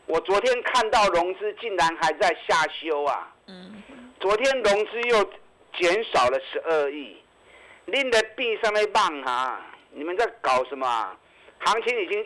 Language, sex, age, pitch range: Chinese, male, 50-69, 170-280 Hz